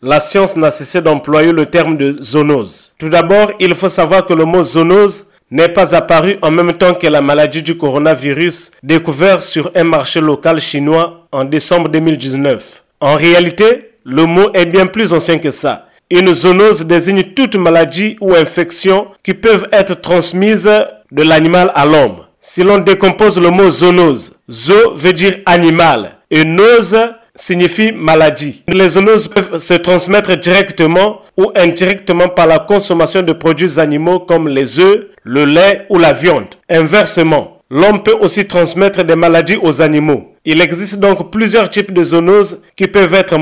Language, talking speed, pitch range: French, 165 wpm, 160-195 Hz